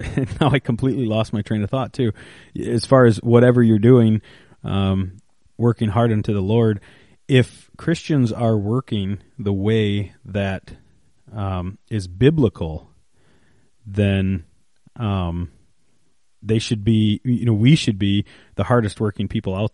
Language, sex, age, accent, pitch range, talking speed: English, male, 30-49, American, 100-120 Hz, 140 wpm